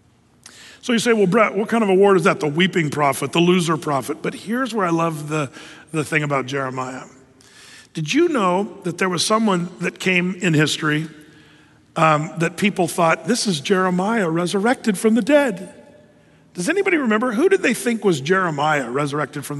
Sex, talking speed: male, 185 wpm